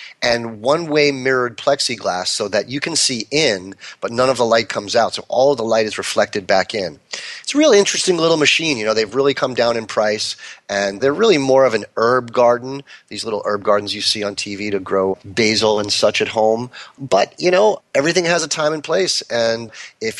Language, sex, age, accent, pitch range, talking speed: English, male, 30-49, American, 110-145 Hz, 220 wpm